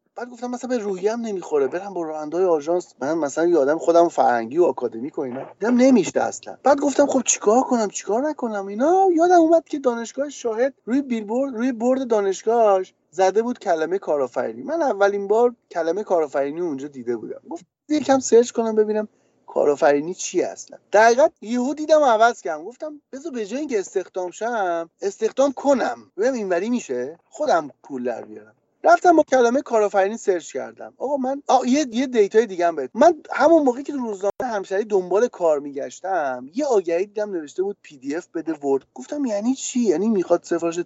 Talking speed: 165 wpm